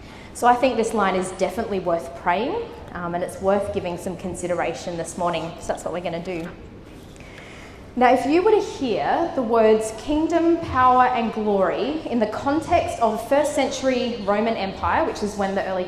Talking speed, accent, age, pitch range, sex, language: 195 wpm, Australian, 20-39, 185-240 Hz, female, English